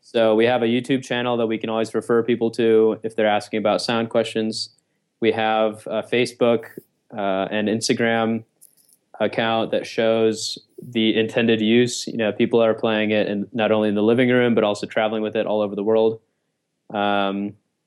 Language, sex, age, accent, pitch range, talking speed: English, male, 20-39, American, 110-120 Hz, 185 wpm